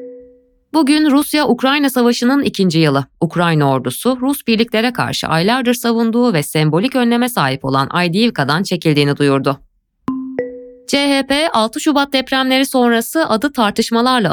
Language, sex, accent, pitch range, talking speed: Turkish, female, native, 160-250 Hz, 115 wpm